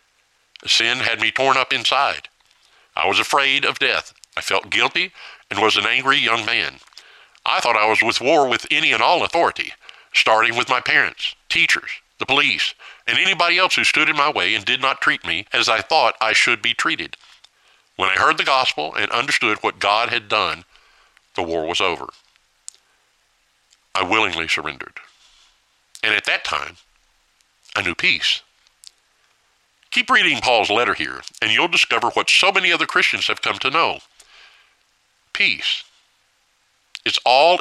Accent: American